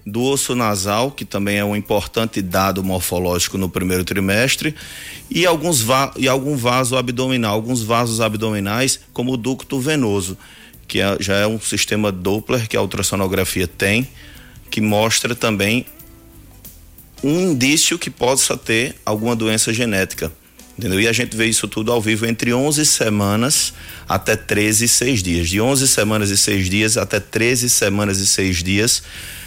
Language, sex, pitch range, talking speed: Portuguese, male, 100-120 Hz, 160 wpm